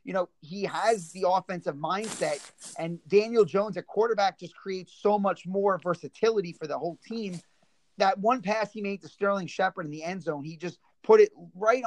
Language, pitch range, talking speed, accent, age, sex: English, 175-210 Hz, 195 wpm, American, 30-49, male